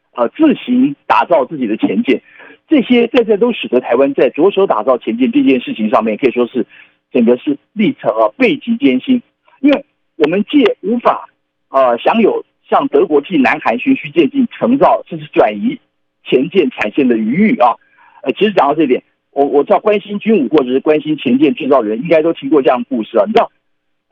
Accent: native